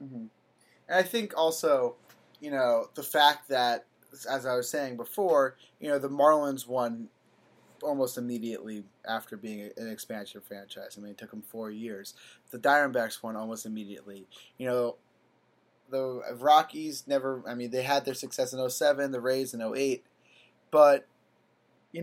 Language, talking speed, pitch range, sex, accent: English, 160 wpm, 120-155 Hz, male, American